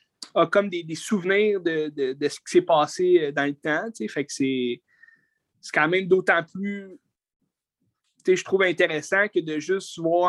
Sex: male